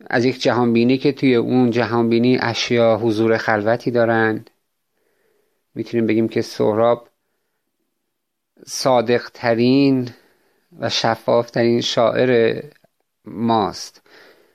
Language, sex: Persian, male